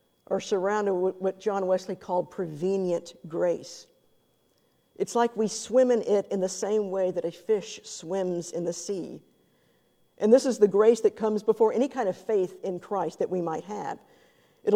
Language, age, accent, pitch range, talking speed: English, 50-69, American, 185-220 Hz, 185 wpm